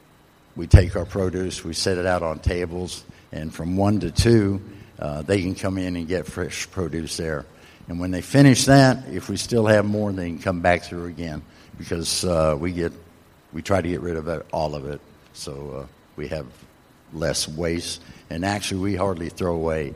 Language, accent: English, American